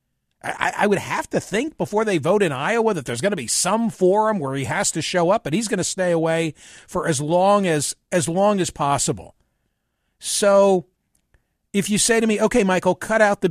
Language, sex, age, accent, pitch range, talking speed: English, male, 50-69, American, 145-195 Hz, 215 wpm